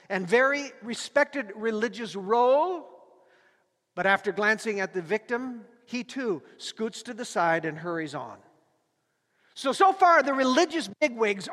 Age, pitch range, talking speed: 50-69, 210-280 Hz, 135 wpm